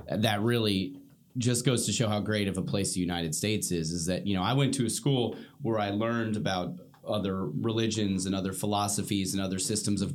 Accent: American